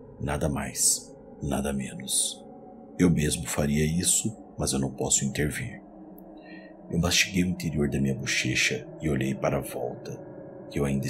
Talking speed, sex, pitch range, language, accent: 150 wpm, male, 70-85 Hz, Portuguese, Brazilian